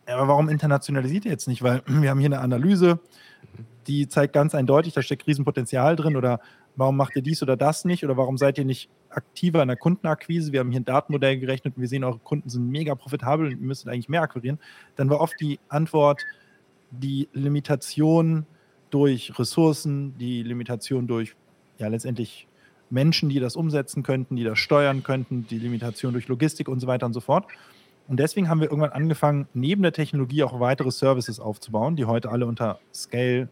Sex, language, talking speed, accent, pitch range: male, German, 190 wpm, German, 120-150 Hz